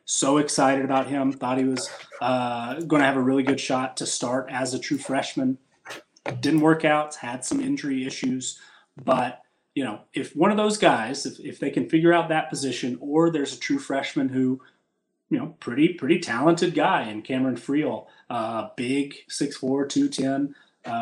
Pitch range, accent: 125-155 Hz, American